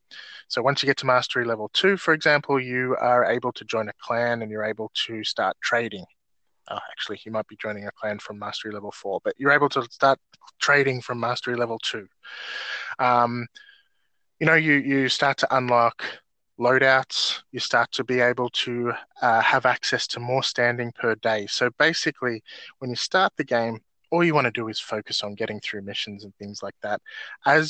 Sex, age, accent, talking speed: male, 20-39, Australian, 195 wpm